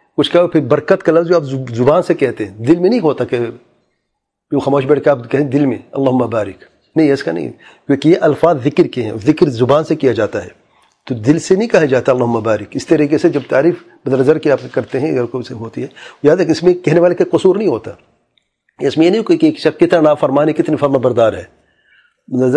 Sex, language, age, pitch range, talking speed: male, English, 40-59, 135-170 Hz, 160 wpm